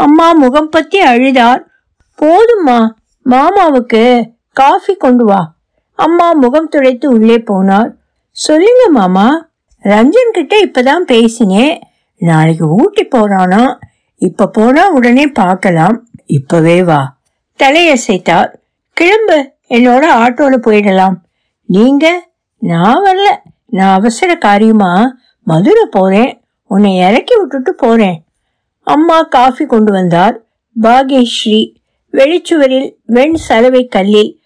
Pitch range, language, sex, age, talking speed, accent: 210-305 Hz, Tamil, female, 60-79, 95 wpm, native